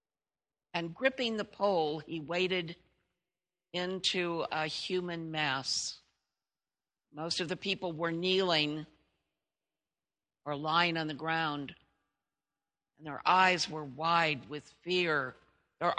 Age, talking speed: 60-79, 110 wpm